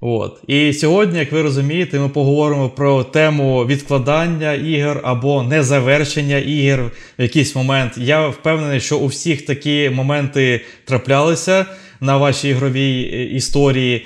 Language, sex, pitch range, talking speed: Ukrainian, male, 125-150 Hz, 130 wpm